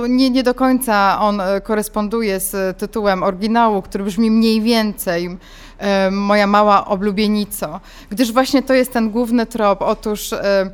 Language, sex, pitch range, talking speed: Polish, female, 200-245 Hz, 135 wpm